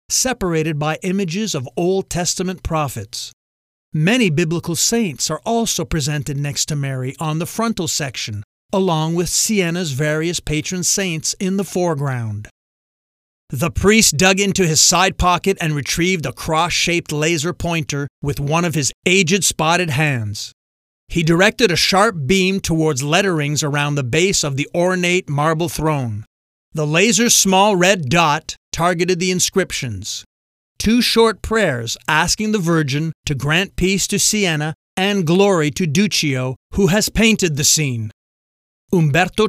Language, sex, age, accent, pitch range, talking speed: English, male, 40-59, American, 145-190 Hz, 140 wpm